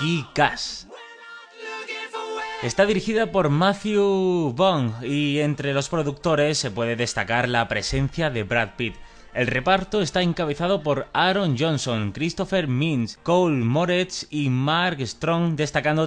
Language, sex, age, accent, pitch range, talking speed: Spanish, male, 30-49, Spanish, 115-160 Hz, 120 wpm